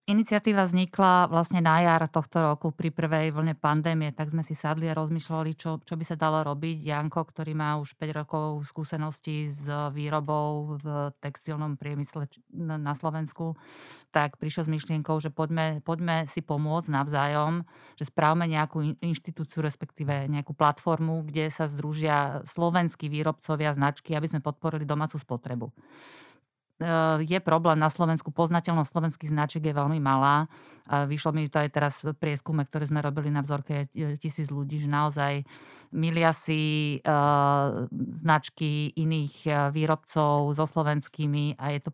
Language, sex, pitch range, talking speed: Slovak, female, 145-160 Hz, 145 wpm